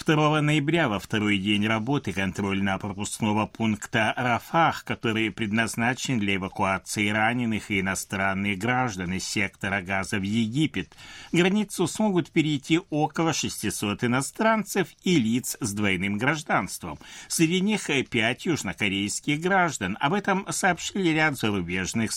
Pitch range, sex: 100-155 Hz, male